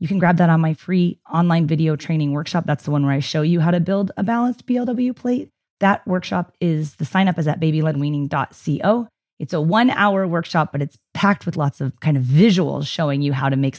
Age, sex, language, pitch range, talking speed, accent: 30-49, female, English, 145-190 Hz, 230 wpm, American